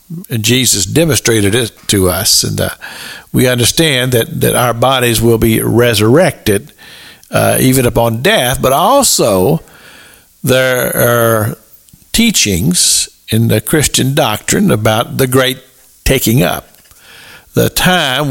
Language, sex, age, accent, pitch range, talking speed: English, male, 60-79, American, 115-155 Hz, 120 wpm